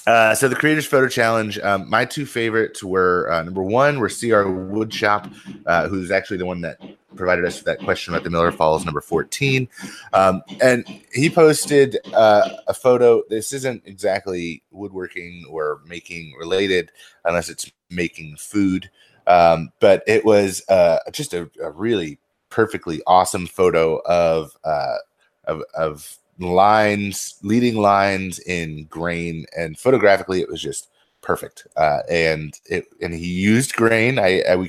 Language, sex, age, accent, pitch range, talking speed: English, male, 30-49, American, 85-110 Hz, 155 wpm